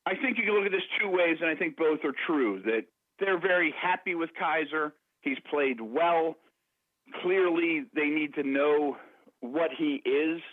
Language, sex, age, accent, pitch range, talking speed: English, male, 40-59, American, 125-185 Hz, 180 wpm